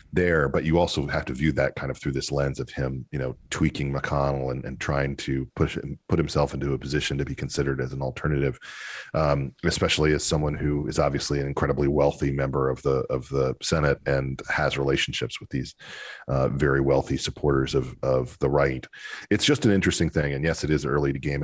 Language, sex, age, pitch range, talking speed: English, male, 40-59, 70-75 Hz, 215 wpm